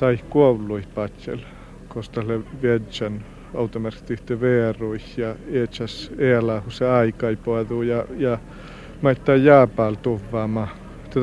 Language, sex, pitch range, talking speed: Finnish, male, 115-135 Hz, 95 wpm